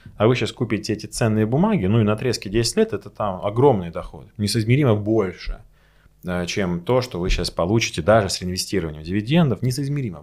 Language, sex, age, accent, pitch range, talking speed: Russian, male, 20-39, native, 95-125 Hz, 175 wpm